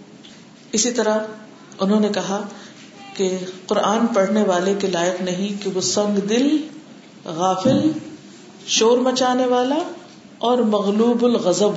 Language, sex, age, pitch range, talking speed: Urdu, female, 50-69, 200-265 Hz, 115 wpm